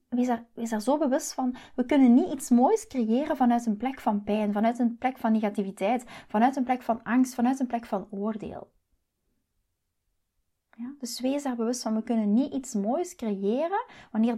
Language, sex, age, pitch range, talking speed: Dutch, female, 30-49, 220-275 Hz, 190 wpm